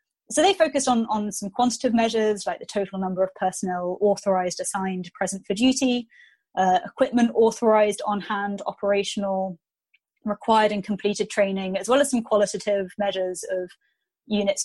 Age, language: 20-39, English